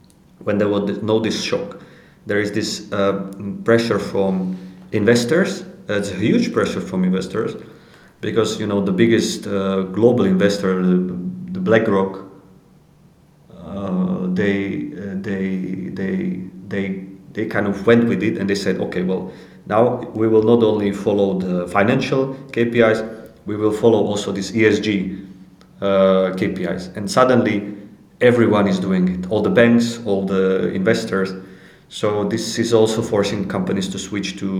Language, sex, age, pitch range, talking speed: English, male, 30-49, 95-115 Hz, 150 wpm